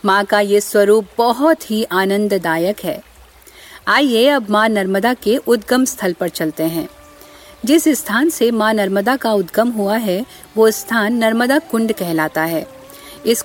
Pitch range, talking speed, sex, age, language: 200-250 Hz, 150 wpm, female, 50-69, Hindi